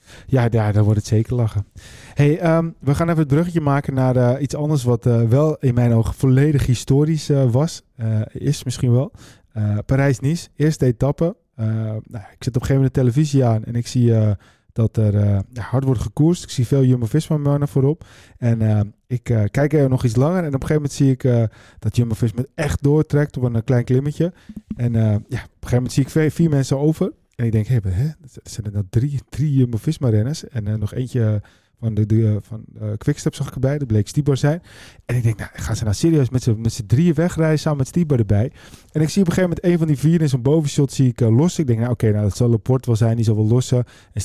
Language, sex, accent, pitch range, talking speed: Dutch, male, Dutch, 115-150 Hz, 245 wpm